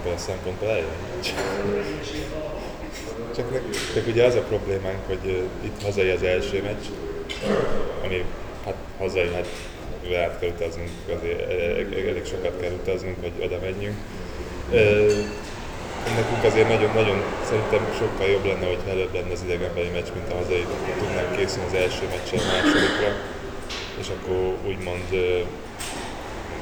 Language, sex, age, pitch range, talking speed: Hungarian, male, 20-39, 90-100 Hz, 120 wpm